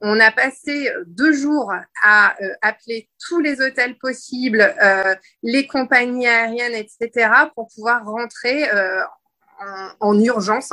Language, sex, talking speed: French, female, 135 wpm